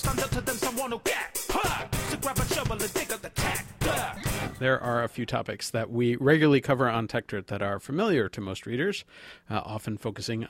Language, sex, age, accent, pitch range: English, male, 40-59, American, 105-135 Hz